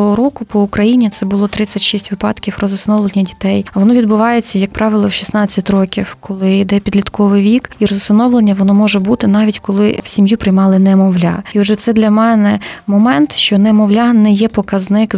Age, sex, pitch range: 20-39, female, 190-210 Hz